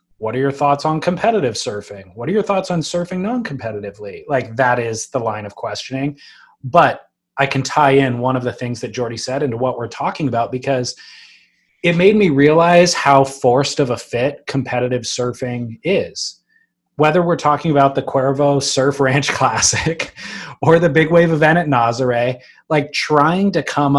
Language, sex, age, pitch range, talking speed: English, male, 20-39, 125-160 Hz, 180 wpm